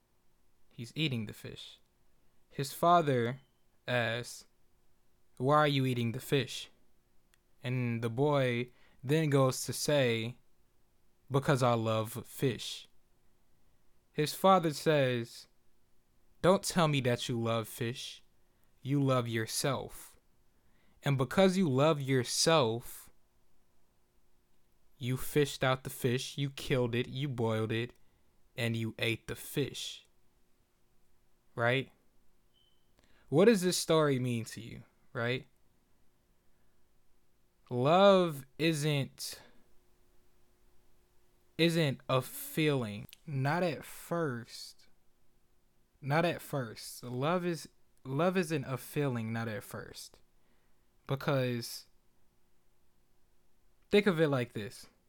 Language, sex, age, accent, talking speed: English, male, 20-39, American, 100 wpm